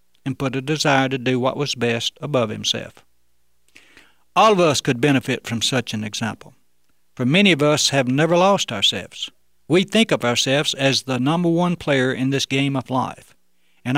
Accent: American